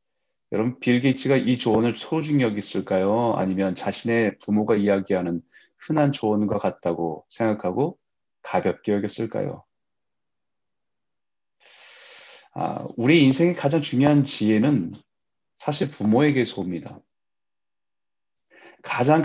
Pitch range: 100-140 Hz